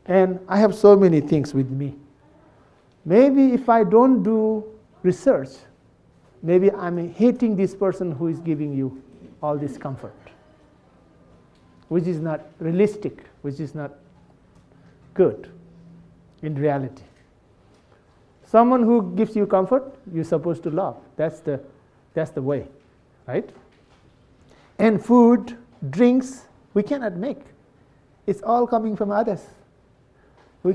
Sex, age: male, 60-79